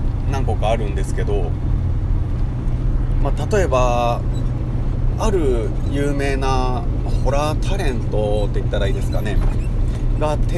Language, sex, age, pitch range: Japanese, male, 30-49, 110-120 Hz